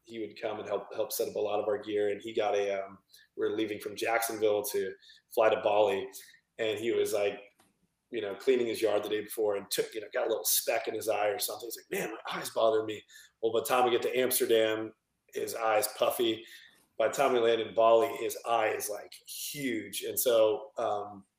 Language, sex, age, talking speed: English, male, 30-49, 240 wpm